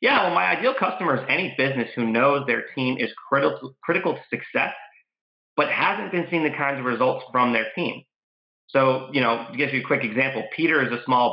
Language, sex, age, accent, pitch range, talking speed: English, male, 30-49, American, 115-140 Hz, 210 wpm